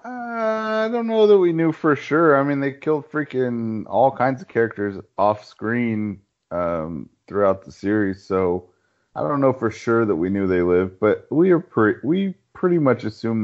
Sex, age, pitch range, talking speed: male, 30-49, 100-135 Hz, 190 wpm